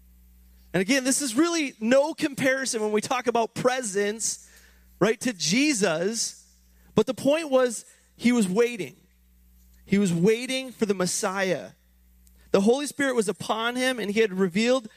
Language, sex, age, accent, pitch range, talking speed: English, male, 30-49, American, 160-230 Hz, 150 wpm